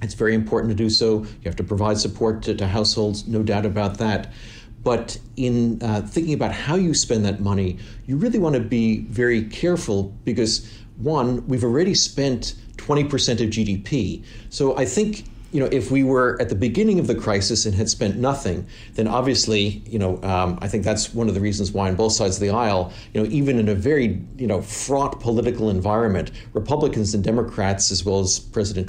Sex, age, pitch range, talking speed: male, 40-59, 105-125 Hz, 200 wpm